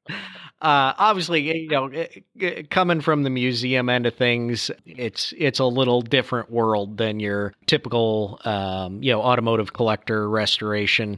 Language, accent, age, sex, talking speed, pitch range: English, American, 40-59, male, 140 wpm, 110-130 Hz